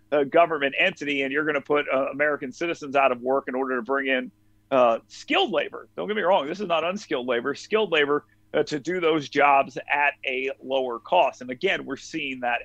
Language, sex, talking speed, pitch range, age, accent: English, male, 225 wpm, 135-185 Hz, 40-59, American